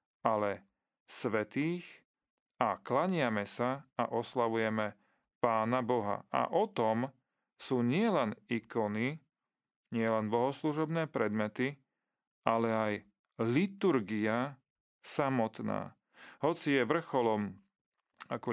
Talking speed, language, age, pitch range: 85 wpm, Slovak, 40-59, 110-130 Hz